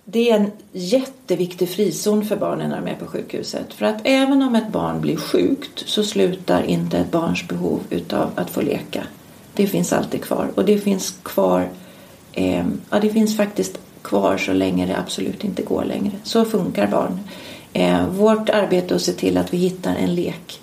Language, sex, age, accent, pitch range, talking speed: English, female, 40-59, Swedish, 170-225 Hz, 185 wpm